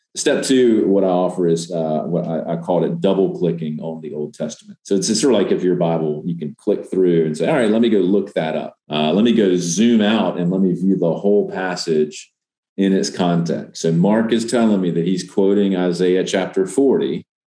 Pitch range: 80-105 Hz